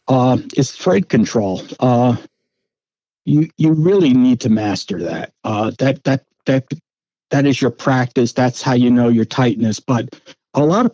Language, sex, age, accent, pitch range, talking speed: English, male, 60-79, American, 120-145 Hz, 165 wpm